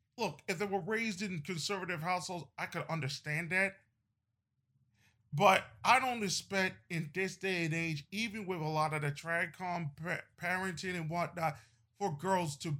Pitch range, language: 120-185 Hz, English